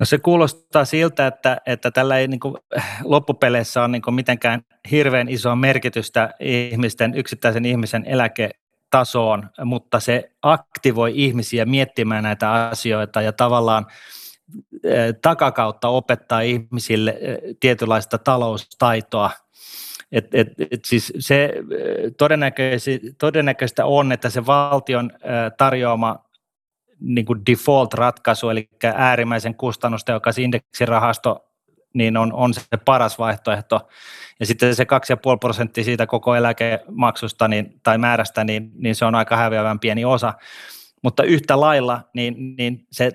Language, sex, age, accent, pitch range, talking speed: Finnish, male, 30-49, native, 115-130 Hz, 115 wpm